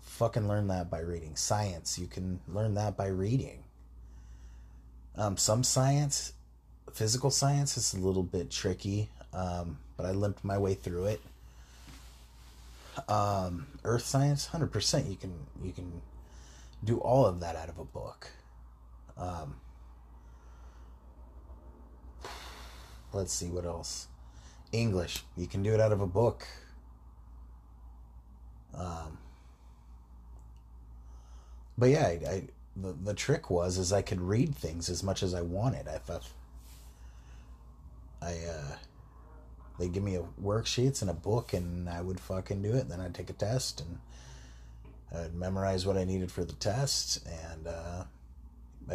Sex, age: male, 30-49